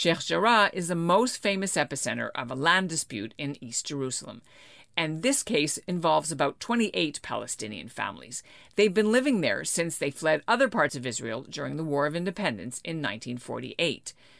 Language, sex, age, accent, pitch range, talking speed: English, female, 50-69, American, 140-195 Hz, 165 wpm